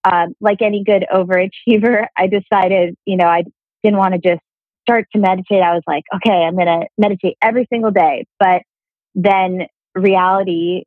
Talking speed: 170 wpm